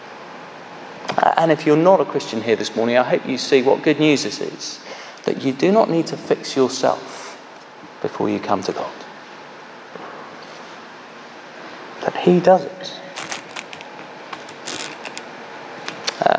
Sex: male